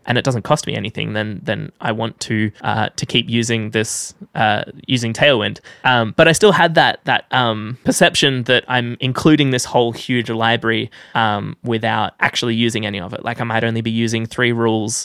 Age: 10-29